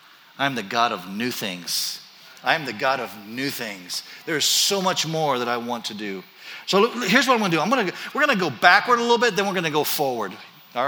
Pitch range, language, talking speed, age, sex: 130-180 Hz, English, 260 wpm, 50-69, male